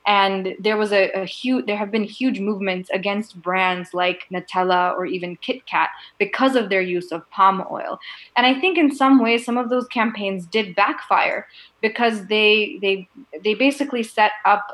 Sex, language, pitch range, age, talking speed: female, English, 185-220 Hz, 20-39, 185 wpm